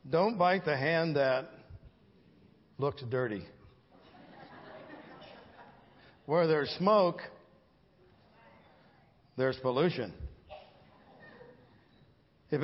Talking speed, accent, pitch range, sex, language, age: 60 wpm, American, 130-165 Hz, male, English, 50-69